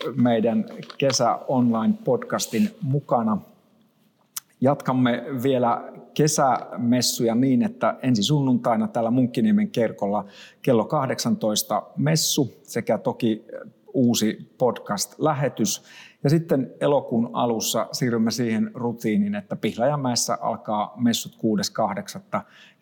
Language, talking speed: Finnish, 85 wpm